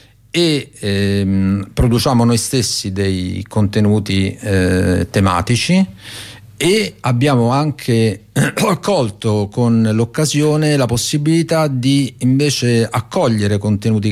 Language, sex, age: Italian, male, 50-69